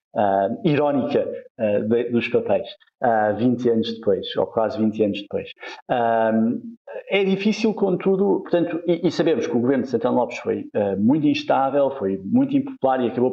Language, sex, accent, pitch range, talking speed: Portuguese, male, Brazilian, 110-185 Hz, 140 wpm